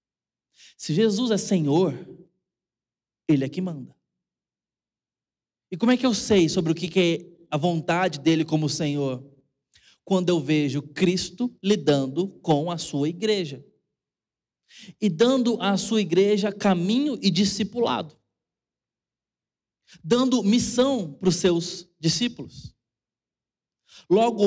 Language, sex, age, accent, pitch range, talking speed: Portuguese, male, 20-39, Brazilian, 165-215 Hz, 115 wpm